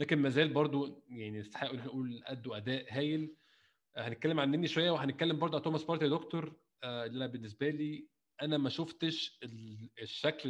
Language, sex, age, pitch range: Arabic, male, 20-39, 130-155 Hz